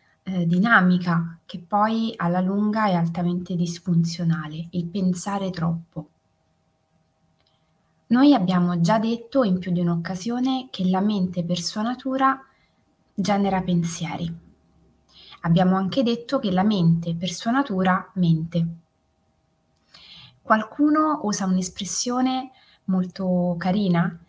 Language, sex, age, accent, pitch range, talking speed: Italian, female, 20-39, native, 175-230 Hz, 105 wpm